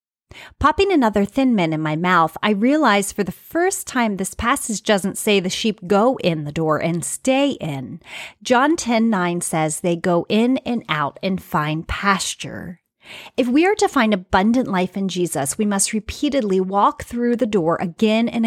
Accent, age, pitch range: American, 30-49, 180-230 Hz